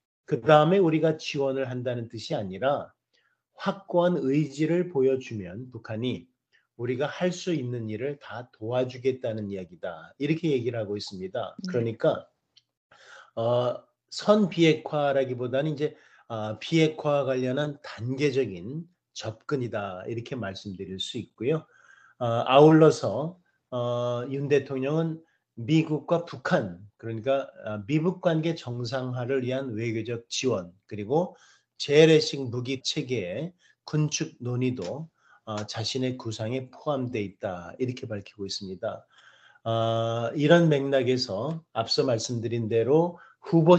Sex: male